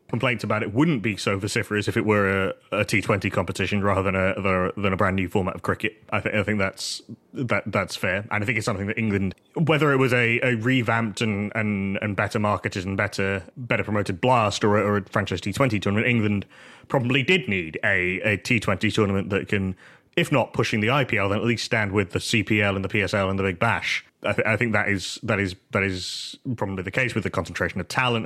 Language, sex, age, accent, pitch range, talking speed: English, male, 30-49, British, 100-120 Hz, 230 wpm